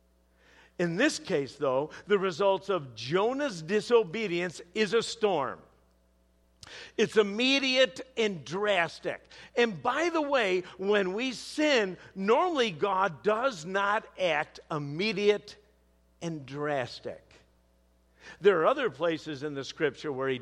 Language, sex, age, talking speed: English, male, 50-69, 120 wpm